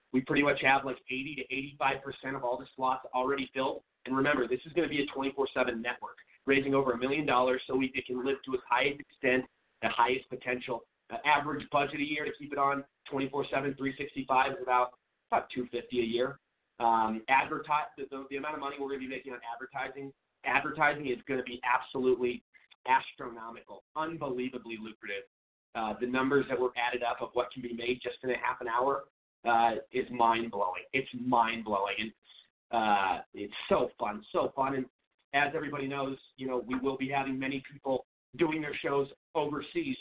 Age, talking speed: 30-49, 185 wpm